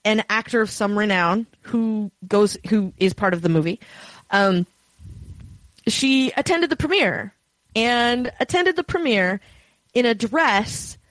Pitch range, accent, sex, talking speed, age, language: 200-280 Hz, American, female, 135 wpm, 20-39, English